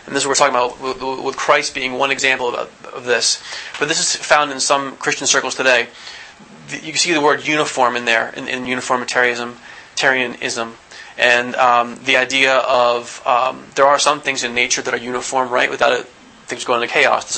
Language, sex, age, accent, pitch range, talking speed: English, male, 30-49, American, 125-135 Hz, 190 wpm